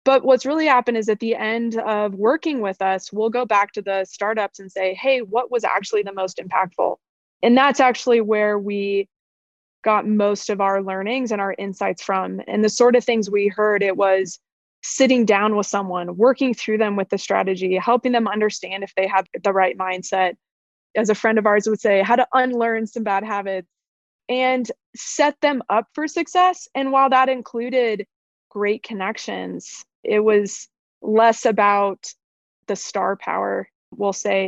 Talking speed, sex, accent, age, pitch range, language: 180 wpm, female, American, 20-39, 195-245 Hz, English